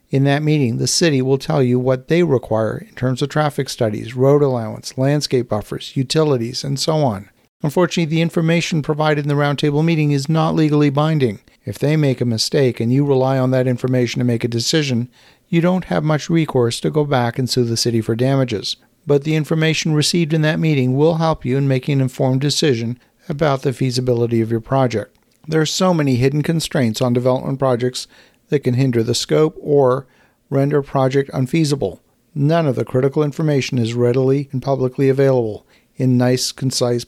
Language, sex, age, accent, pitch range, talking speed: English, male, 50-69, American, 120-150 Hz, 190 wpm